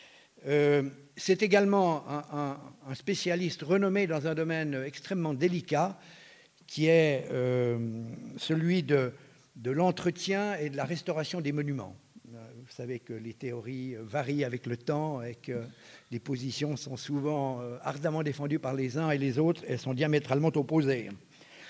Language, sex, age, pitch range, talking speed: French, male, 50-69, 130-170 Hz, 145 wpm